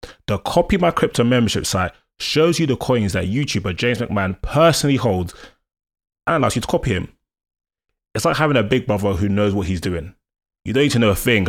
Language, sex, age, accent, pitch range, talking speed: English, male, 20-39, British, 95-120 Hz, 210 wpm